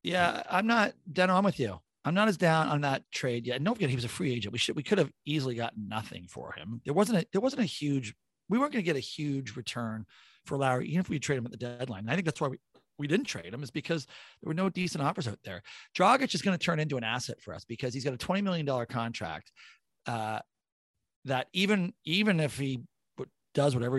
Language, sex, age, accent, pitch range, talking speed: English, male, 40-59, American, 110-160 Hz, 255 wpm